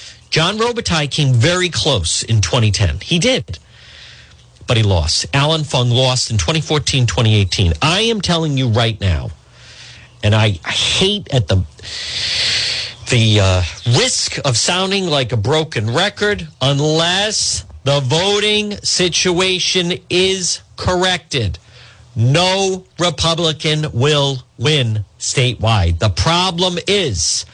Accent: American